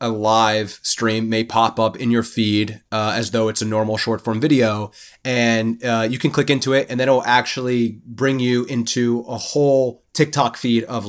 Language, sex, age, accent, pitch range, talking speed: English, male, 30-49, American, 115-140 Hz, 200 wpm